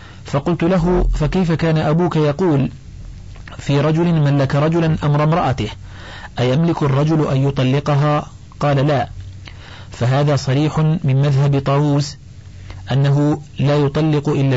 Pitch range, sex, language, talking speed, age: 120-150 Hz, male, Arabic, 110 wpm, 40-59